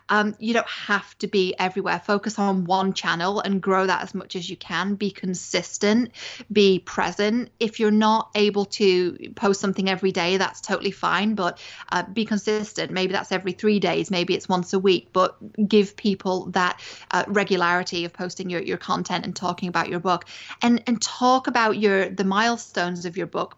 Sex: female